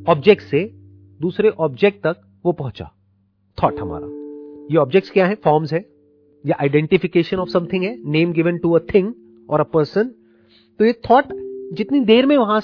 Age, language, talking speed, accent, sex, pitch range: 40-59, Hindi, 165 wpm, native, male, 115-195 Hz